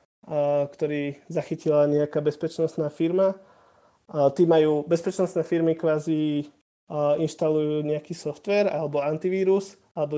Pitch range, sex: 150-165 Hz, male